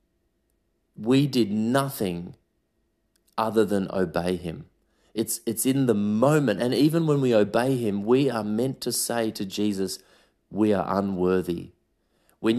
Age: 30-49